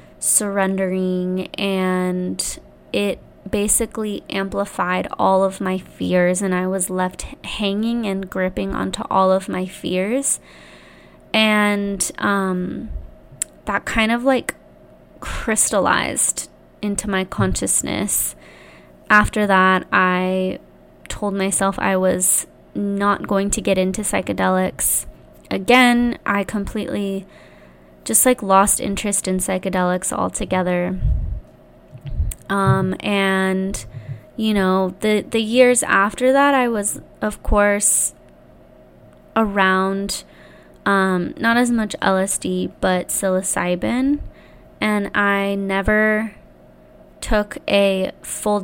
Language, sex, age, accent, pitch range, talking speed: English, female, 20-39, American, 185-205 Hz, 100 wpm